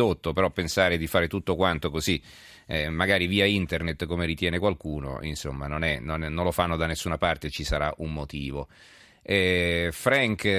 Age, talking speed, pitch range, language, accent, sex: 40-59, 165 wpm, 80-100 Hz, Italian, native, male